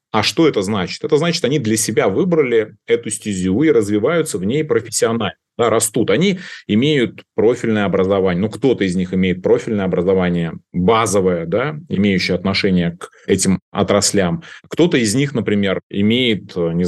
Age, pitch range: 30-49, 90-110 Hz